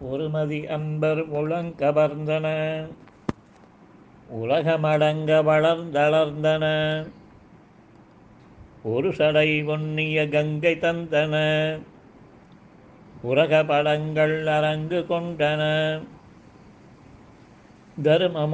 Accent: native